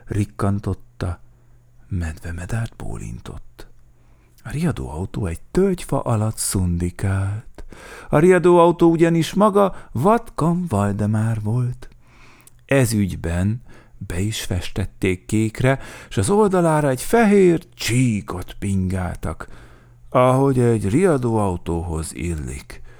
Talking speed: 85 wpm